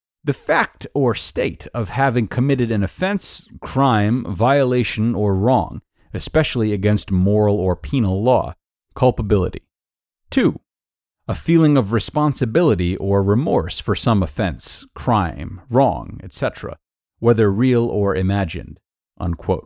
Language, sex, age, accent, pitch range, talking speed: English, male, 40-59, American, 100-160 Hz, 115 wpm